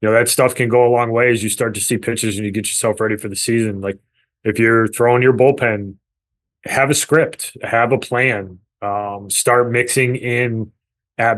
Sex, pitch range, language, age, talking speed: male, 105-120 Hz, English, 20-39, 200 wpm